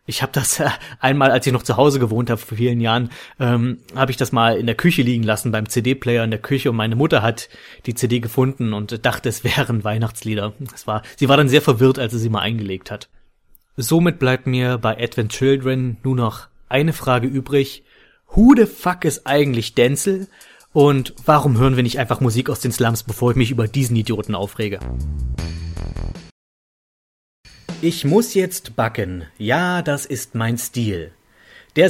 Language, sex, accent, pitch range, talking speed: German, male, German, 110-135 Hz, 185 wpm